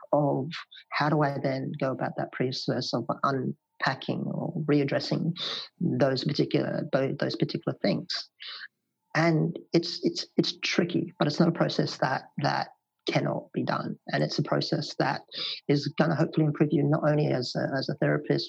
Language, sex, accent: English, male, Australian